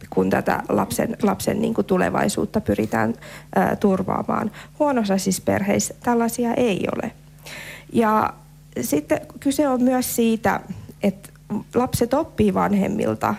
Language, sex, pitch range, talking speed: Finnish, female, 150-225 Hz, 105 wpm